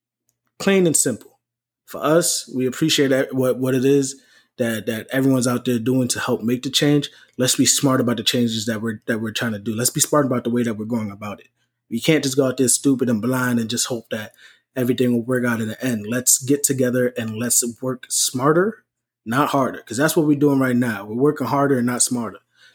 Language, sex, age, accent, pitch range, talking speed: English, male, 20-39, American, 120-145 Hz, 235 wpm